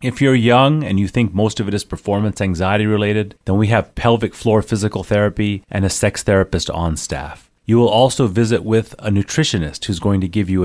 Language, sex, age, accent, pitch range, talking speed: English, male, 30-49, American, 95-120 Hz, 215 wpm